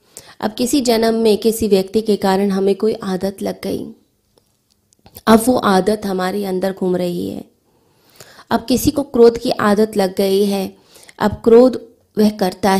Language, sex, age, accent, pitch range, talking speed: Hindi, female, 20-39, native, 195-220 Hz, 160 wpm